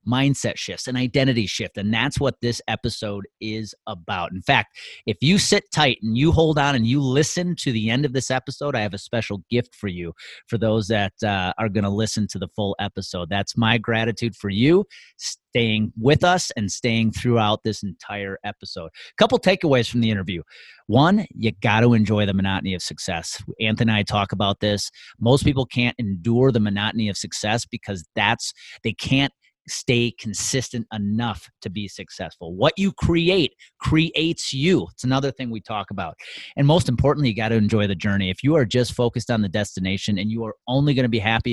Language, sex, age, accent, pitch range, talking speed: English, male, 30-49, American, 100-130 Hz, 200 wpm